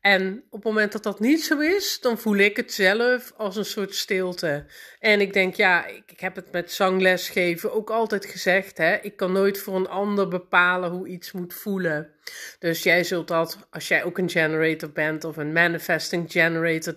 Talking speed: 200 wpm